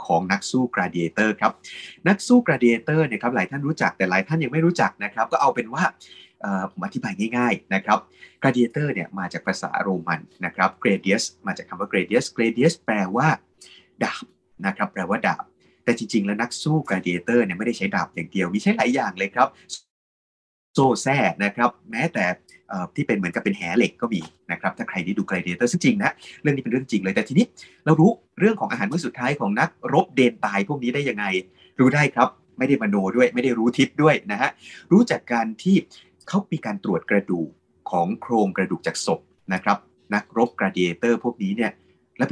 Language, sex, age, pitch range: Thai, male, 30-49, 100-160 Hz